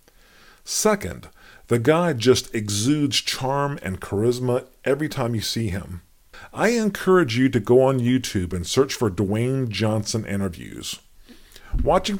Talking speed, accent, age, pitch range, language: 135 wpm, American, 50-69, 100-140 Hz, English